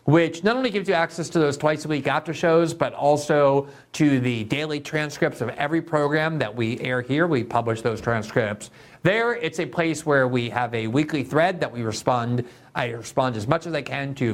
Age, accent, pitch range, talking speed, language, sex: 50-69, American, 120-160 Hz, 215 wpm, English, male